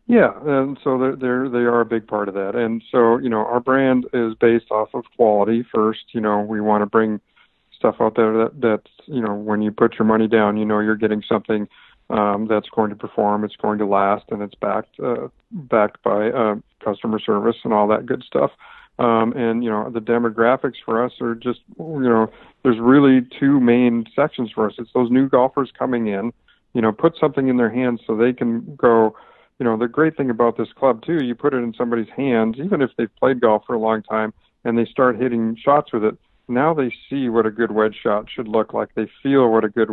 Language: English